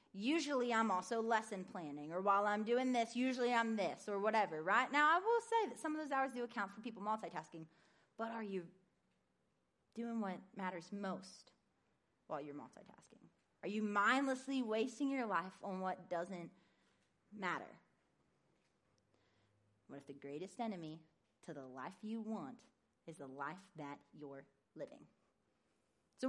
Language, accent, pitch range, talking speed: English, American, 185-260 Hz, 155 wpm